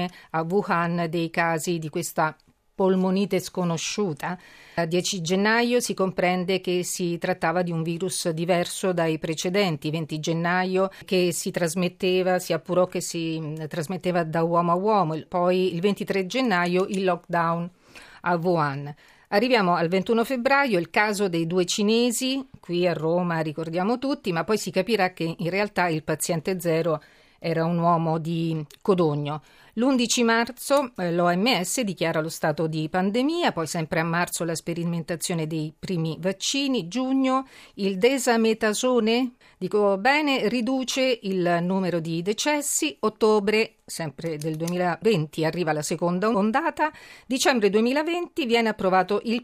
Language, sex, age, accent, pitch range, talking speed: Italian, female, 40-59, native, 170-220 Hz, 135 wpm